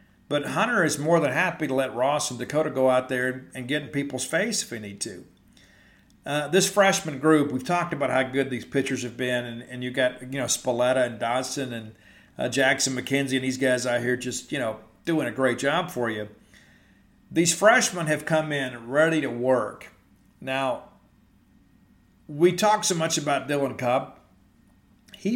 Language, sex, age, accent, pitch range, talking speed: English, male, 50-69, American, 125-160 Hz, 190 wpm